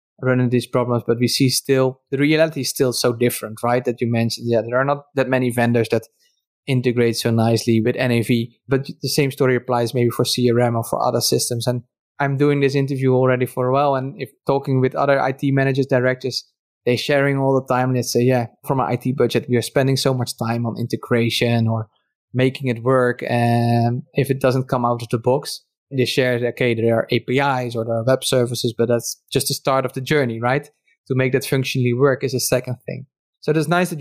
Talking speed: 225 wpm